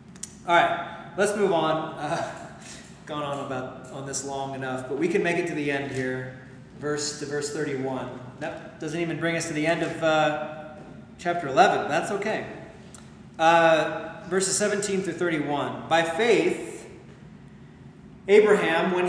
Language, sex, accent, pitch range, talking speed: English, male, American, 150-190 Hz, 155 wpm